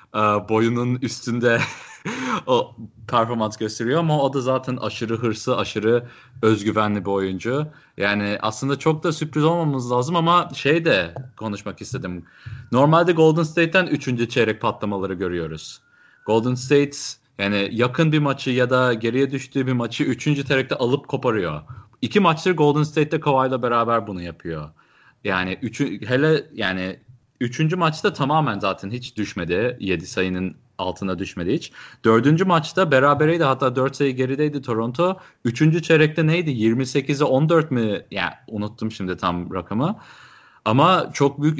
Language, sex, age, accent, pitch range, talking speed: Turkish, male, 30-49, native, 110-145 Hz, 140 wpm